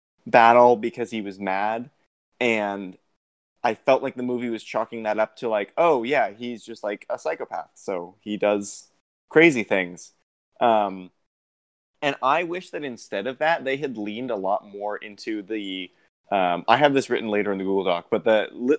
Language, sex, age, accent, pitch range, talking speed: English, male, 20-39, American, 105-125 Hz, 185 wpm